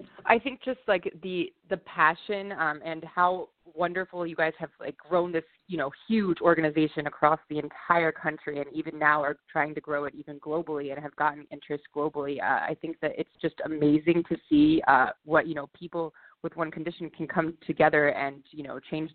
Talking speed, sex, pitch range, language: 200 wpm, female, 150-175 Hz, English